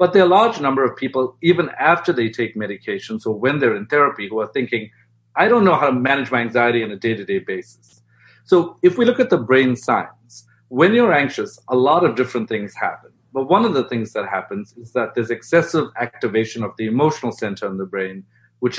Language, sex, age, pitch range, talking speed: English, male, 50-69, 115-150 Hz, 225 wpm